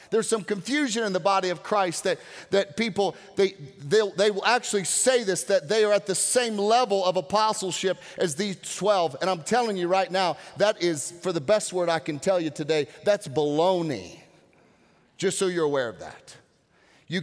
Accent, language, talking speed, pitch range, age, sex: American, English, 190 wpm, 150-205 Hz, 40-59, male